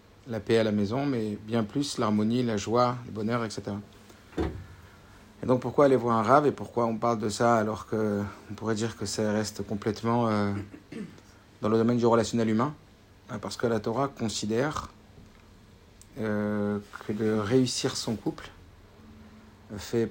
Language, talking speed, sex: French, 155 wpm, male